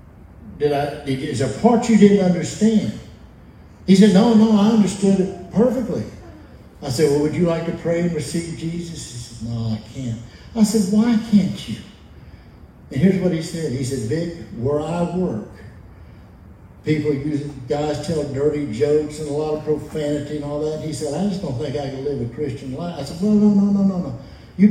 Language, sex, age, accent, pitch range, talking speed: English, male, 60-79, American, 115-175 Hz, 205 wpm